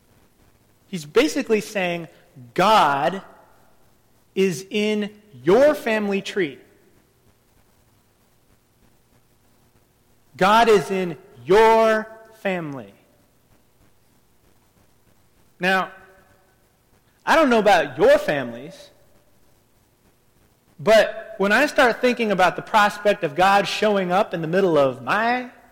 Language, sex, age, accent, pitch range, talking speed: English, male, 30-49, American, 135-205 Hz, 90 wpm